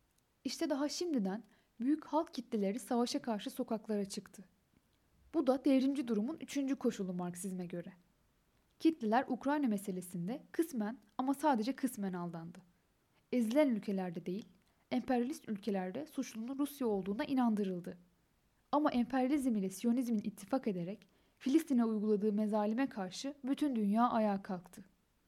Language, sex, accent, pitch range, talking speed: Turkish, female, native, 200-270 Hz, 115 wpm